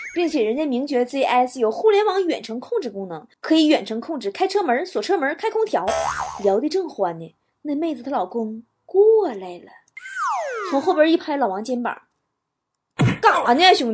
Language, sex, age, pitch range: Chinese, female, 20-39, 215-320 Hz